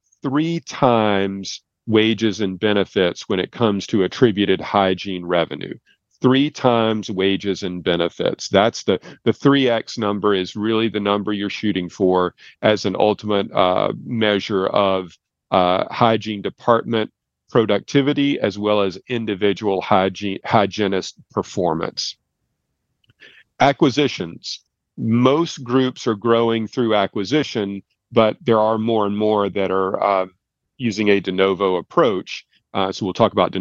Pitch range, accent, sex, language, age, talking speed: 95-120 Hz, American, male, English, 40-59, 130 wpm